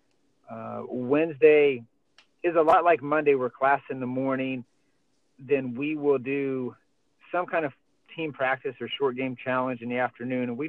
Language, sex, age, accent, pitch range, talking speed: English, male, 40-59, American, 125-145 Hz, 165 wpm